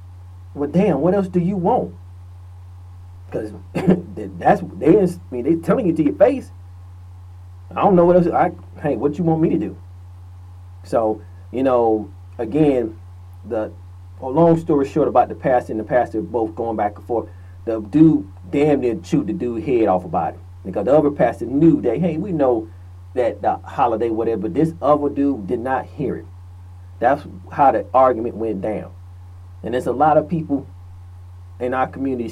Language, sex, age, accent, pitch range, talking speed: English, male, 40-59, American, 90-135 Hz, 180 wpm